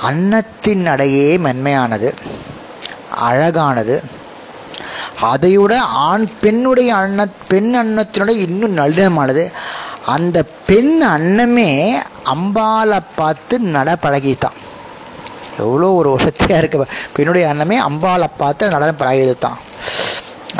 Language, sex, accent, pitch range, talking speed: Tamil, male, native, 130-195 Hz, 60 wpm